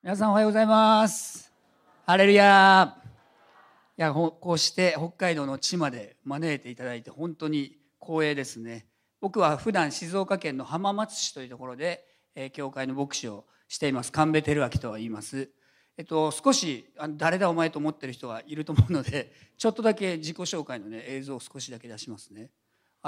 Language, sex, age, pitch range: Japanese, male, 40-59, 130-170 Hz